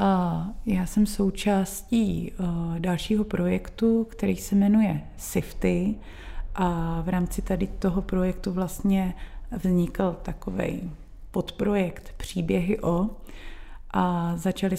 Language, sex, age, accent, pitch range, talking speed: Czech, female, 30-49, native, 175-195 Hz, 95 wpm